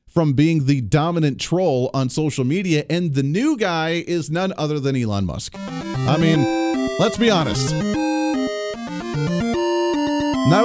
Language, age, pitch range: English, 30-49, 130-180 Hz